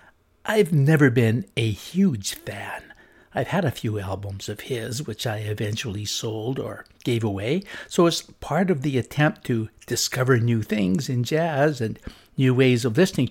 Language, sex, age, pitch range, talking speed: English, male, 60-79, 110-140 Hz, 165 wpm